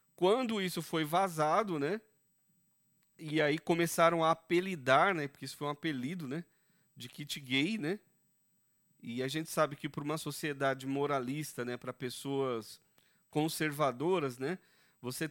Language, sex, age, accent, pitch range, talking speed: Portuguese, male, 40-59, Brazilian, 140-180 Hz, 140 wpm